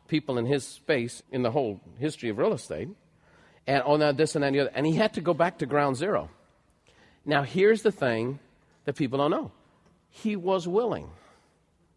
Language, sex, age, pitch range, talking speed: English, male, 40-59, 130-165 Hz, 190 wpm